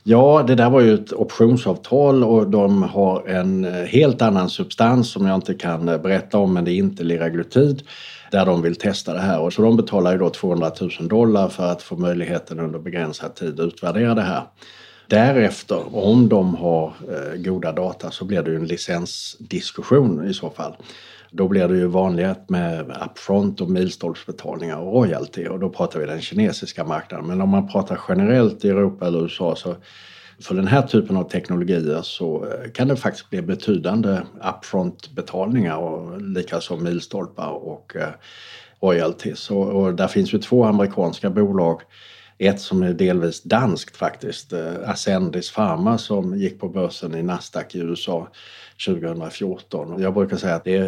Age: 60-79